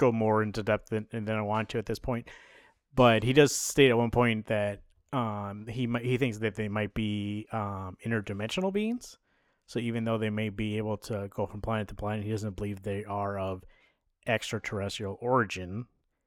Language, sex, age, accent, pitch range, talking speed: English, male, 30-49, American, 100-125 Hz, 195 wpm